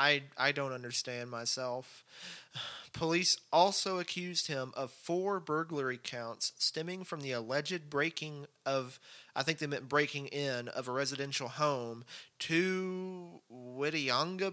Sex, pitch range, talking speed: male, 130-165 Hz, 130 wpm